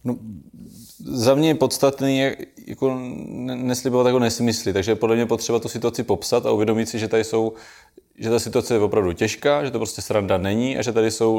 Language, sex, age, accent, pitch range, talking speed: Czech, male, 20-39, native, 105-125 Hz, 200 wpm